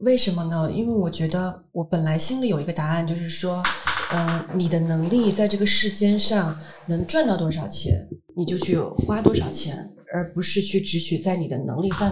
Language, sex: Chinese, female